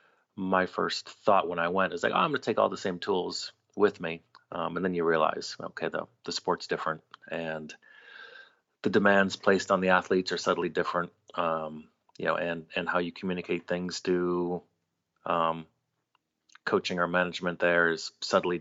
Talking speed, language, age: 180 wpm, English, 30-49